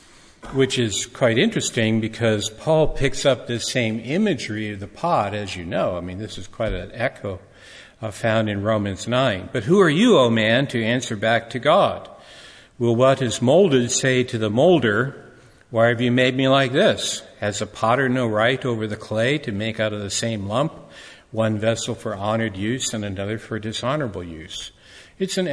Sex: male